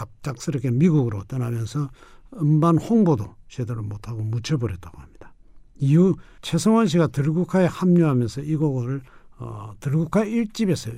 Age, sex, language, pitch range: 60-79, male, Korean, 110-170 Hz